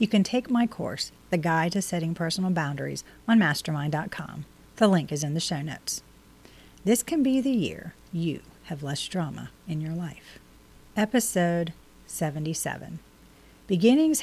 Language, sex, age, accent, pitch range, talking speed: English, female, 40-59, American, 160-195 Hz, 150 wpm